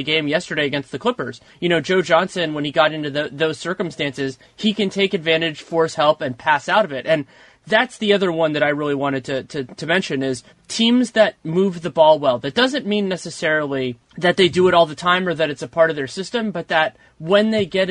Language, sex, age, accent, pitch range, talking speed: English, male, 30-49, American, 145-185 Hz, 240 wpm